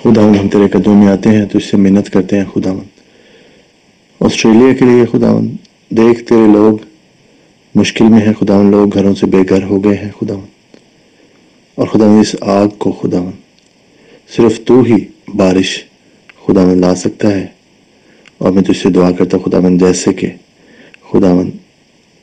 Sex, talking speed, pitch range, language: male, 140 wpm, 90-105 Hz, English